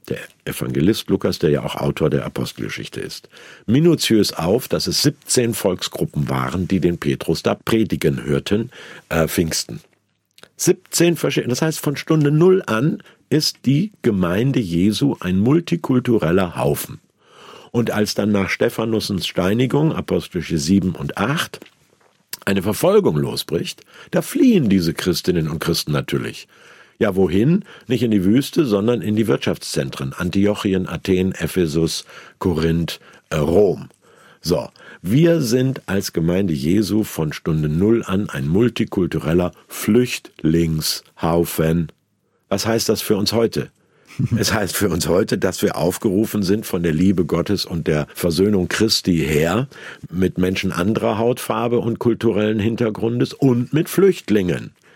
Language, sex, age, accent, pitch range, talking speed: German, male, 50-69, German, 85-120 Hz, 135 wpm